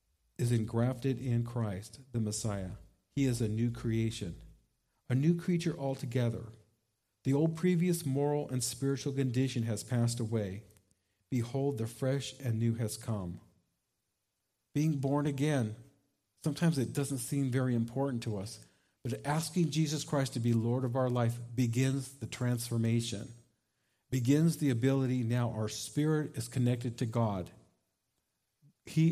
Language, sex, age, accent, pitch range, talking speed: English, male, 50-69, American, 115-140 Hz, 140 wpm